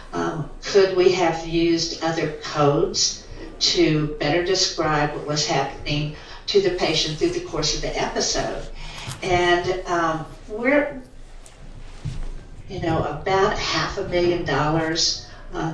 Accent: American